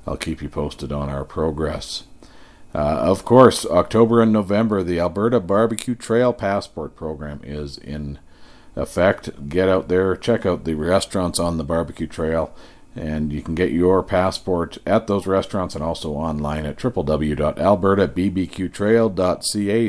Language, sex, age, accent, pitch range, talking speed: English, male, 50-69, American, 80-100 Hz, 140 wpm